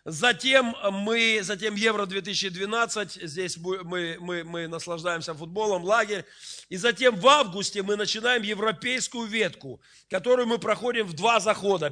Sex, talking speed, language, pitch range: male, 125 wpm, Russian, 195-230 Hz